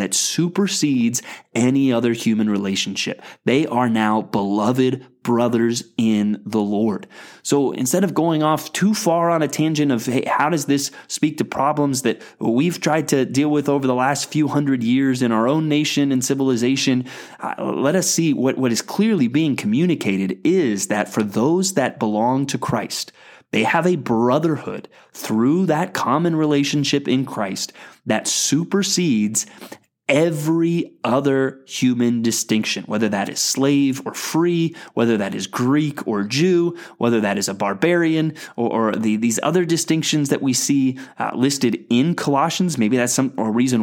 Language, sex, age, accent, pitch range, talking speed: English, male, 30-49, American, 120-160 Hz, 160 wpm